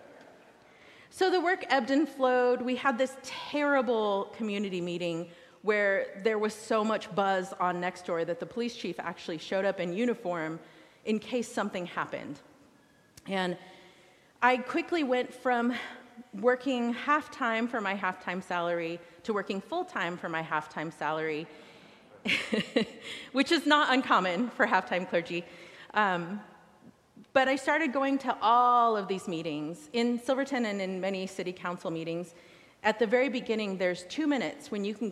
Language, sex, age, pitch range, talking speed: English, female, 30-49, 175-245 Hz, 150 wpm